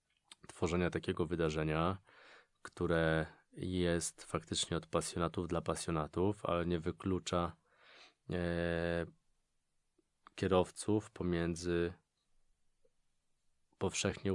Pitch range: 80-90 Hz